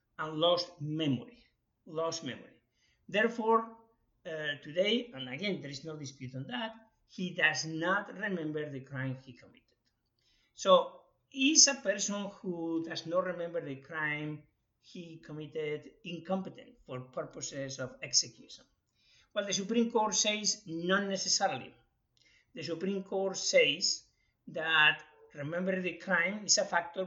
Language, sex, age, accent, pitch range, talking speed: English, male, 50-69, Spanish, 145-195 Hz, 130 wpm